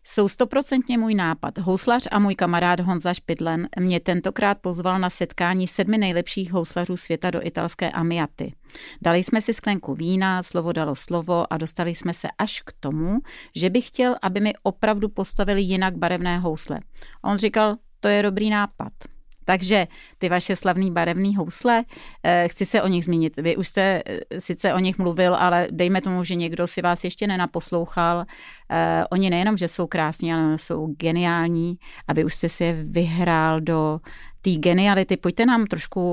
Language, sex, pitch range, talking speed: Czech, female, 170-205 Hz, 170 wpm